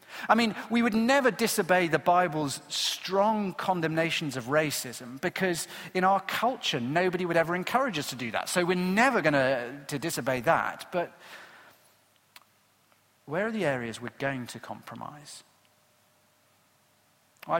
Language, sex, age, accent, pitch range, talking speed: English, male, 40-59, British, 135-185 Hz, 140 wpm